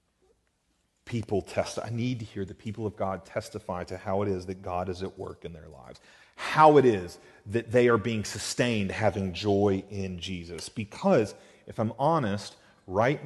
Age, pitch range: 30-49, 95-155 Hz